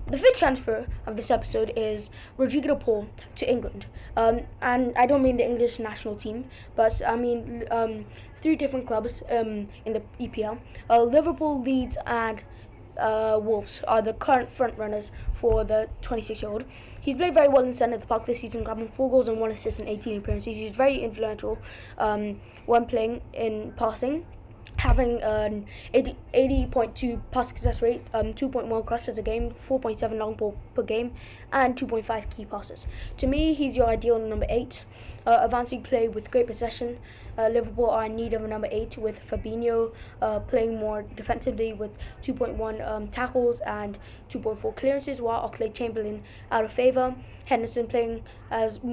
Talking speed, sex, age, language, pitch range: 170 wpm, female, 10-29, English, 220-250 Hz